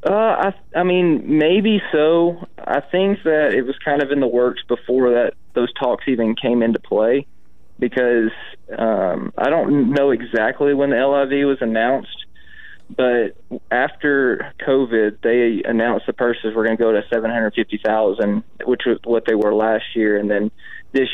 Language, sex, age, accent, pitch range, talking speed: English, male, 20-39, American, 110-130 Hz, 165 wpm